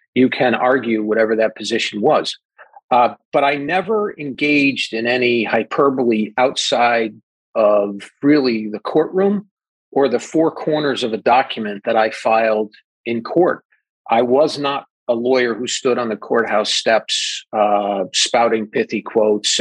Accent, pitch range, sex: American, 110-140 Hz, male